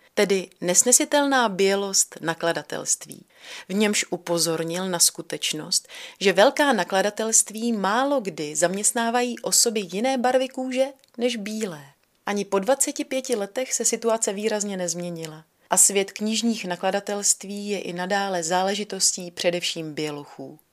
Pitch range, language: 175-225 Hz, Czech